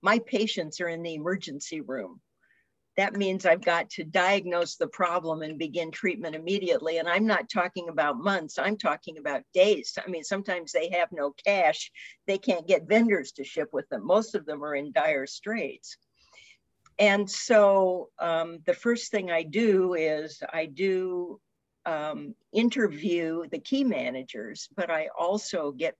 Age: 50-69